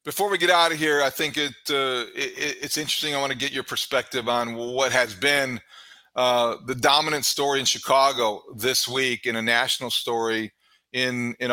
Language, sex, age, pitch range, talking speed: English, male, 40-59, 120-140 Hz, 195 wpm